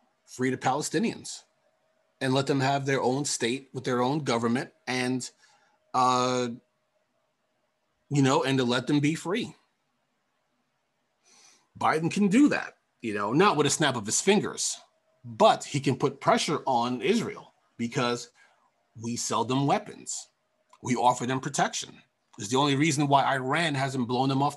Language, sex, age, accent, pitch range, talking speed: English, male, 30-49, American, 130-160 Hz, 155 wpm